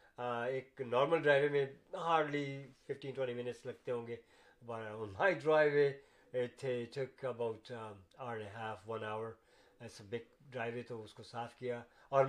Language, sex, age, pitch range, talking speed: Urdu, male, 50-69, 120-145 Hz, 130 wpm